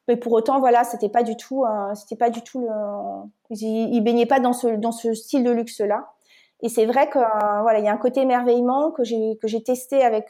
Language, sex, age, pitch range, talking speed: French, female, 30-49, 225-270 Hz, 250 wpm